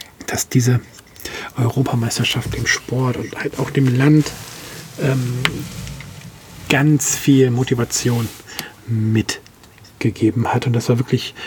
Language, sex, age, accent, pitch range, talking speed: German, male, 40-59, German, 120-140 Hz, 105 wpm